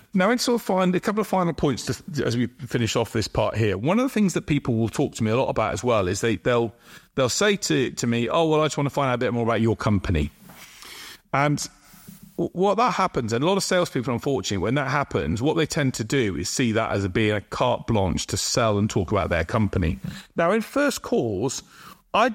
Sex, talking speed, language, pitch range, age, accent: male, 240 wpm, English, 110-155 Hz, 40-59, British